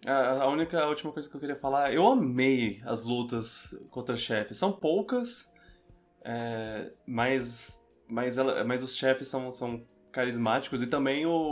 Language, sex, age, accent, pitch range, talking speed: Portuguese, male, 20-39, Brazilian, 110-135 Hz, 155 wpm